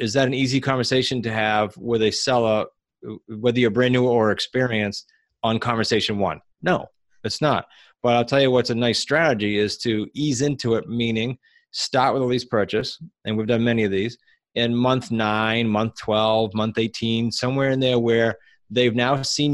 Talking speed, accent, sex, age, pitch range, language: 185 wpm, American, male, 30-49, 110-125 Hz, English